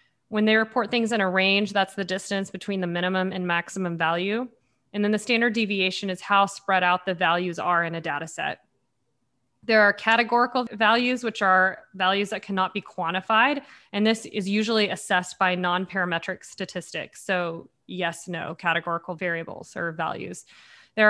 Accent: American